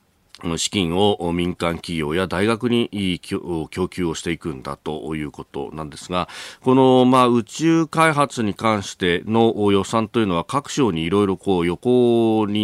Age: 40-59